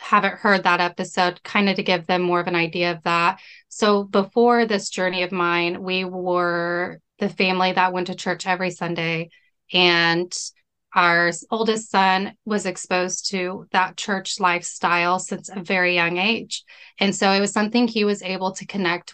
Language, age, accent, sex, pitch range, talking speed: English, 20-39, American, female, 180-205 Hz, 175 wpm